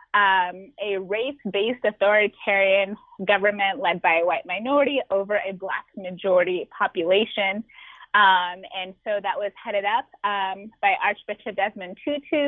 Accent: American